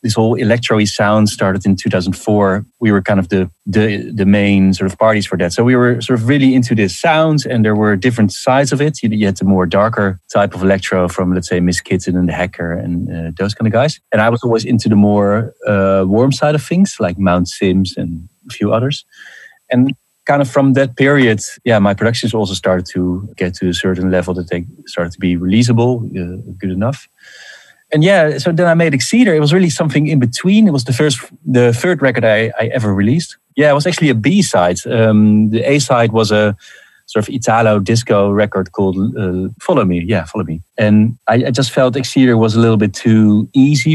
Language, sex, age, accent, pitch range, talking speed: English, male, 30-49, Dutch, 95-125 Hz, 225 wpm